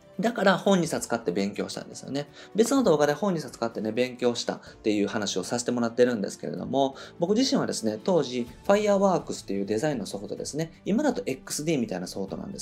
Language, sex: Japanese, male